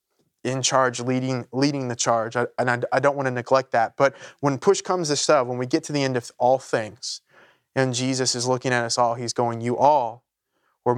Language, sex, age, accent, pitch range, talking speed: English, male, 20-39, American, 125-145 Hz, 230 wpm